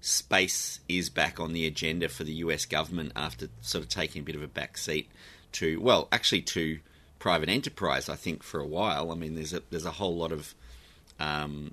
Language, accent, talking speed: English, Australian, 210 wpm